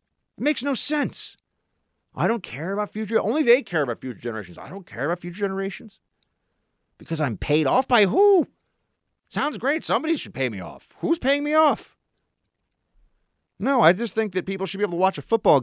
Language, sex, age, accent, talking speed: English, male, 40-59, American, 195 wpm